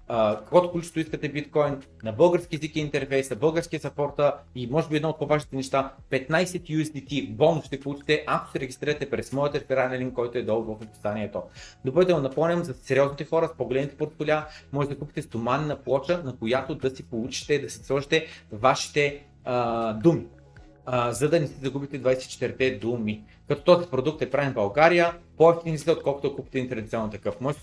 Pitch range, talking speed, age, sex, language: 125-160 Hz, 185 wpm, 30-49, male, Bulgarian